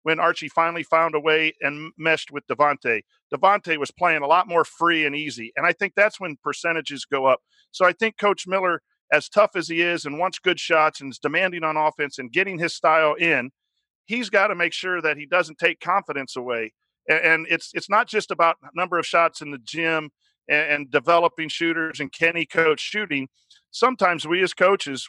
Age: 50-69